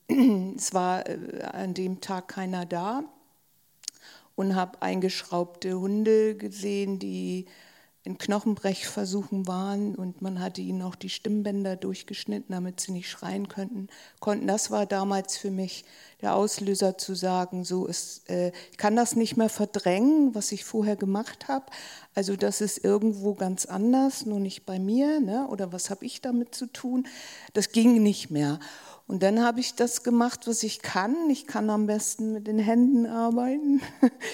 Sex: female